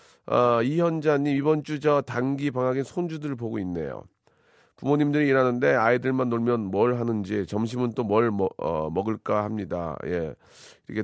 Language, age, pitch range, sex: Korean, 40-59, 95-125 Hz, male